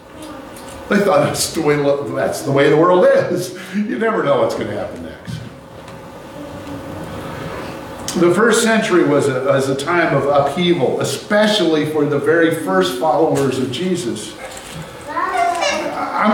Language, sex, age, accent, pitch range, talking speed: English, male, 50-69, American, 150-205 Hz, 130 wpm